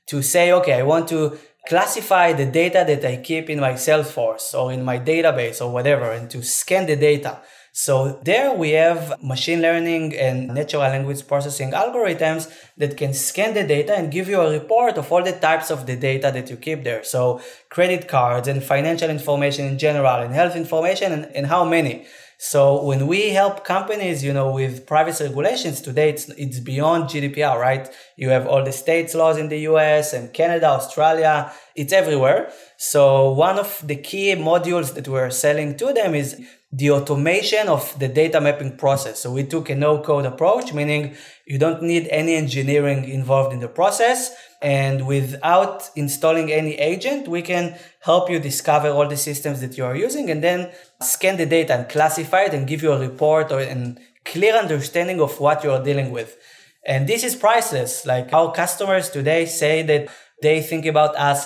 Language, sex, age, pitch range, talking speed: English, male, 20-39, 135-165 Hz, 185 wpm